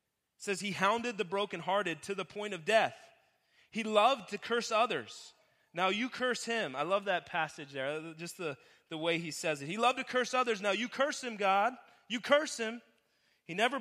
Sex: male